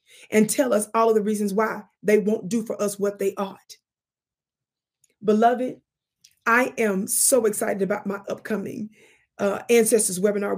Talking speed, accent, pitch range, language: 155 wpm, American, 205-230 Hz, English